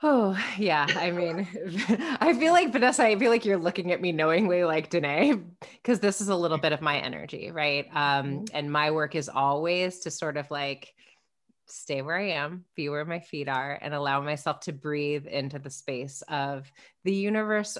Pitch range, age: 135-170 Hz, 20-39